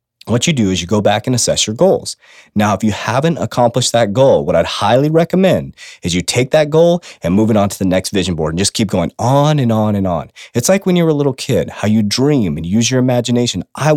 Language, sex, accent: English, male, American